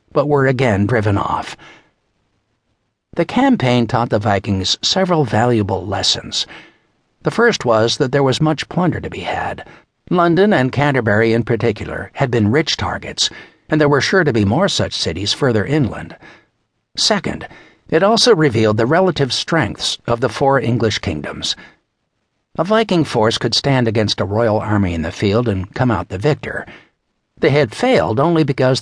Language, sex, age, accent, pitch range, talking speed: English, male, 60-79, American, 105-140 Hz, 160 wpm